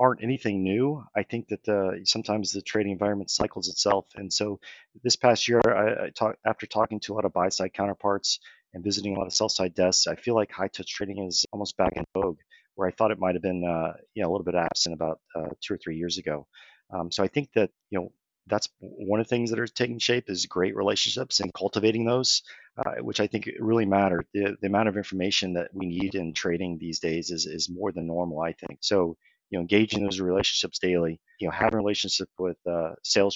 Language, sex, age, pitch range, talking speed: English, male, 40-59, 90-105 Hz, 235 wpm